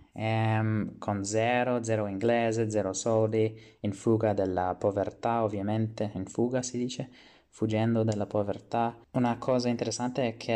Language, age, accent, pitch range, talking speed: Italian, 20-39, native, 100-110 Hz, 130 wpm